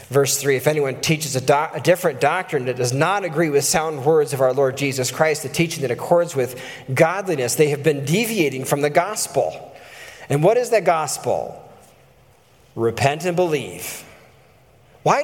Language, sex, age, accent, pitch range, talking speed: English, male, 40-59, American, 140-200 Hz, 175 wpm